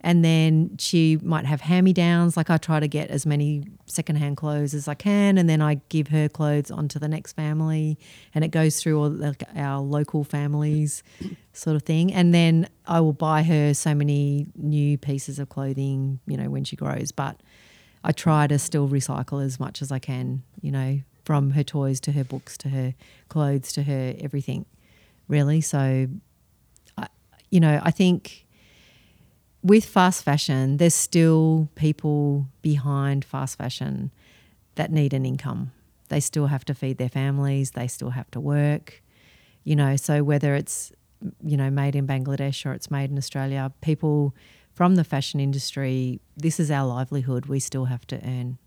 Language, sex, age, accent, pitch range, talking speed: English, female, 40-59, Australian, 135-155 Hz, 180 wpm